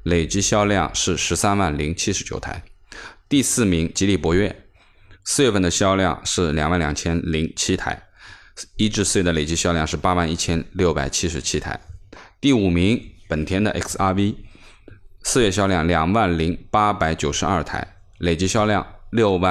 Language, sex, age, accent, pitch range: Chinese, male, 20-39, native, 85-100 Hz